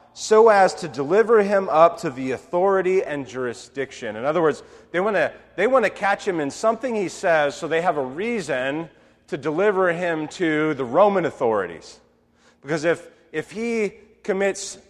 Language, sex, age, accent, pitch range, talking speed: English, male, 30-49, American, 120-190 Hz, 165 wpm